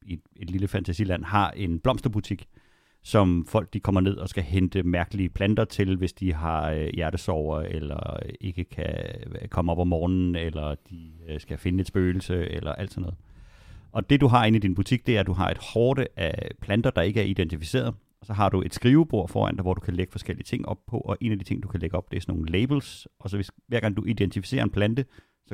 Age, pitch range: 30-49, 90-110 Hz